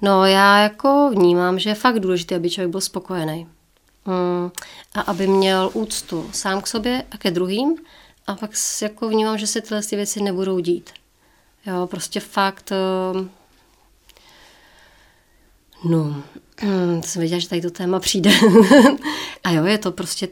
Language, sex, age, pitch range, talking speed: Czech, female, 30-49, 180-210 Hz, 155 wpm